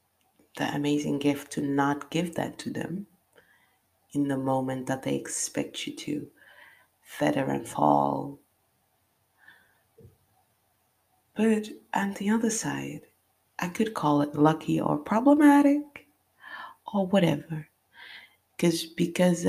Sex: female